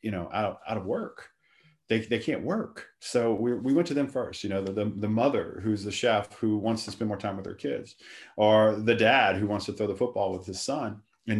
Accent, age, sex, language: American, 40-59, male, English